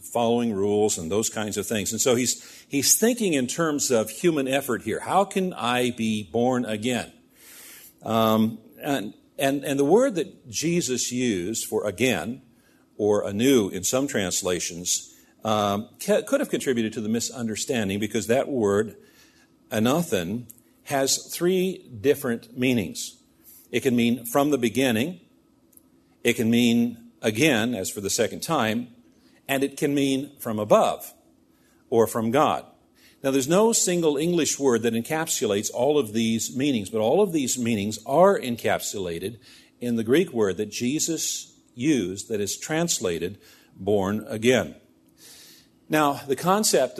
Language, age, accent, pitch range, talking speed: English, 50-69, American, 110-150 Hz, 145 wpm